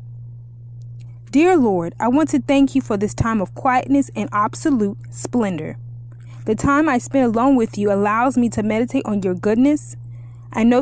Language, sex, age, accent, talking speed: English, female, 20-39, American, 170 wpm